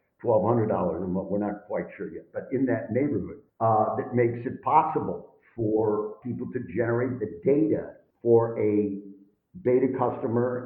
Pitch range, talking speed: 110-135 Hz, 140 wpm